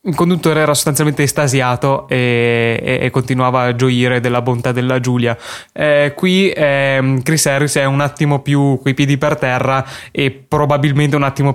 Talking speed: 165 wpm